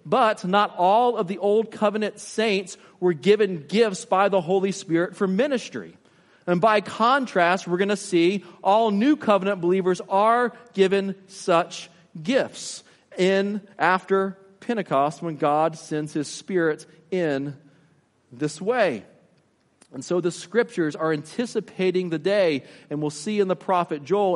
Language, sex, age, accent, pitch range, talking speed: English, male, 40-59, American, 155-195 Hz, 145 wpm